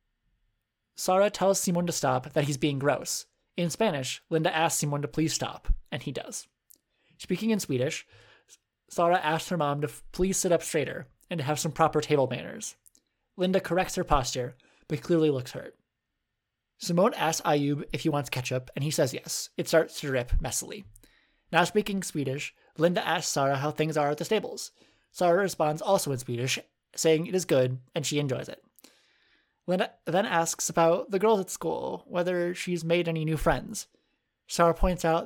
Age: 20-39